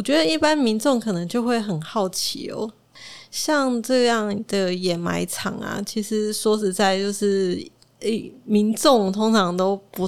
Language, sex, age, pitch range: Chinese, female, 20-39, 180-215 Hz